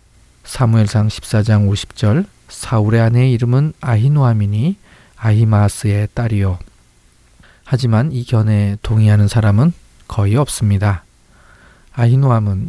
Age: 40-59